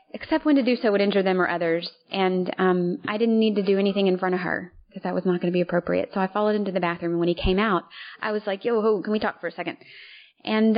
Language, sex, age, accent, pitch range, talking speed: English, female, 30-49, American, 170-200 Hz, 295 wpm